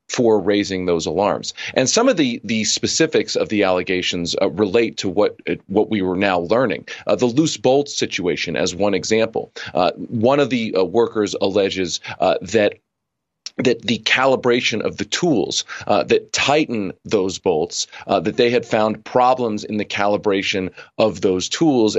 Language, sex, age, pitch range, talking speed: English, male, 40-59, 95-120 Hz, 170 wpm